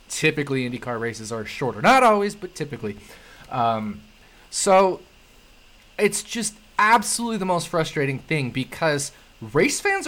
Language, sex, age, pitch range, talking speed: English, male, 20-39, 130-185 Hz, 125 wpm